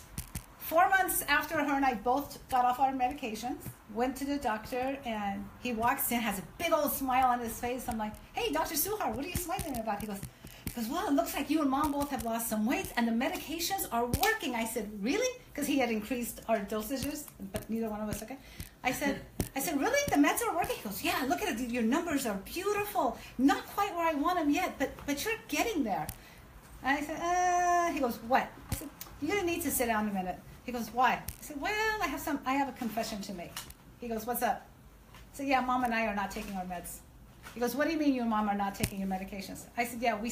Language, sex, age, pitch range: English, female, 50-69, 230-290 Hz